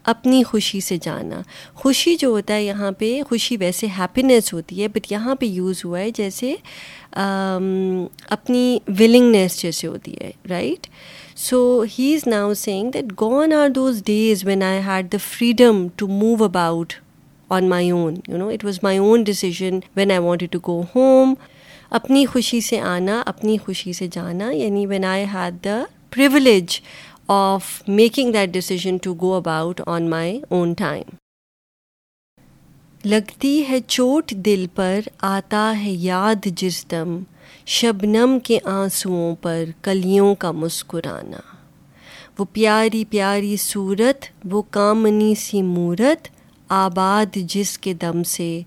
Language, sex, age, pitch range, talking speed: Urdu, female, 30-49, 180-220 Hz, 105 wpm